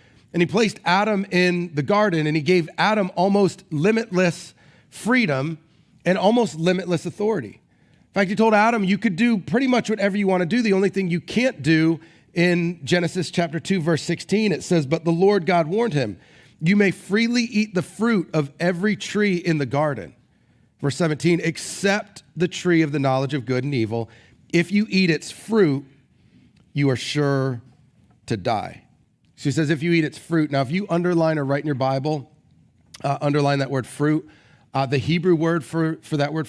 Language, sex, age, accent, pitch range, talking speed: English, male, 30-49, American, 140-200 Hz, 190 wpm